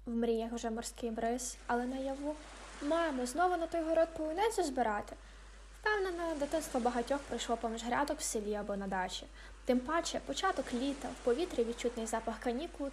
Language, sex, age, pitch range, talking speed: Ukrainian, female, 10-29, 225-315 Hz, 165 wpm